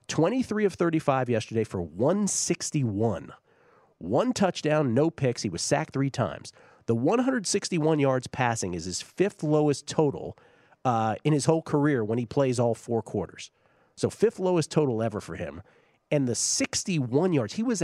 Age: 40-59